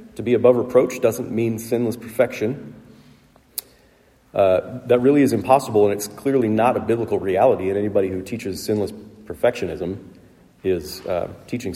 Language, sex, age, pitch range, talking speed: English, male, 40-59, 100-125 Hz, 150 wpm